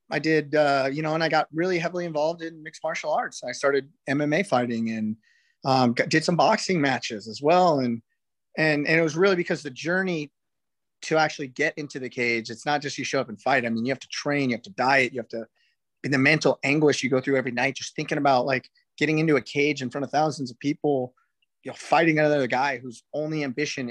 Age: 30-49